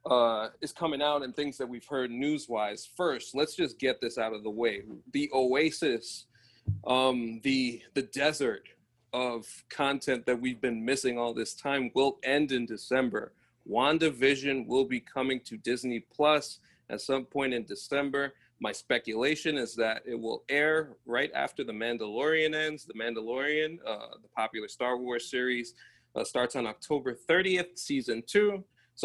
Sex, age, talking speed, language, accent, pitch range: male, 30-49, 165 wpm, English, American, 120-150 Hz